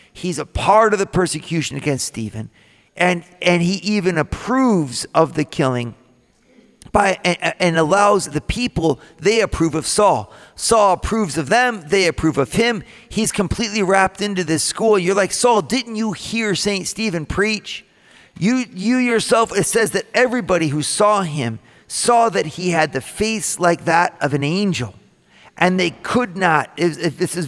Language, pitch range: English, 140-200 Hz